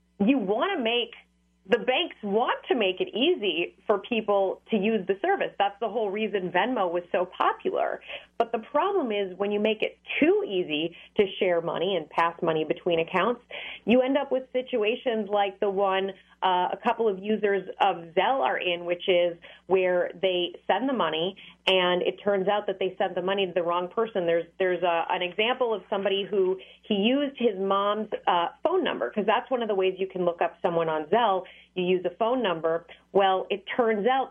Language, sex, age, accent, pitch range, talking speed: English, female, 30-49, American, 185-240 Hz, 205 wpm